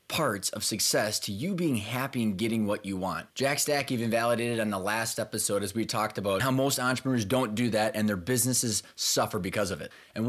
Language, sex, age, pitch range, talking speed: English, male, 20-39, 105-130 Hz, 220 wpm